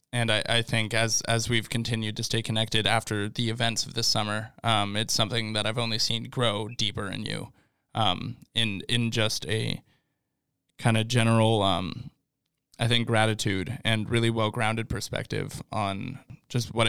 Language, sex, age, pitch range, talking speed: English, male, 20-39, 110-120 Hz, 170 wpm